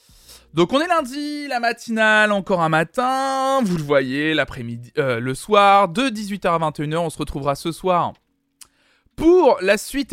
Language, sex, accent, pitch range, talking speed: French, male, French, 130-190 Hz, 165 wpm